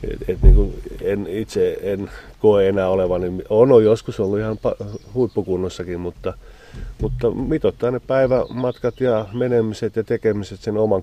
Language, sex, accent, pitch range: Finnish, male, native, 95-115 Hz